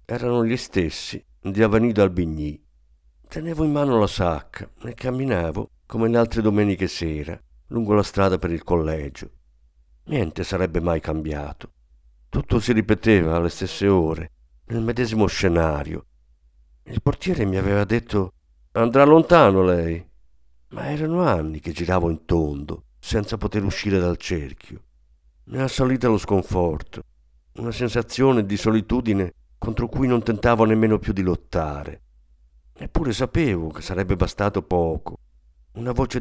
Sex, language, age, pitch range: male, Italian, 50-69, 75-115 Hz